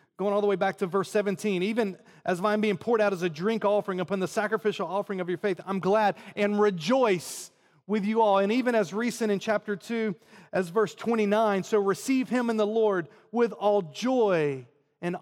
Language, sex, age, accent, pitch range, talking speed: English, male, 30-49, American, 180-225 Hz, 205 wpm